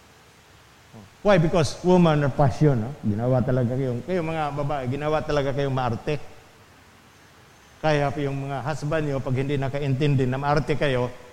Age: 50-69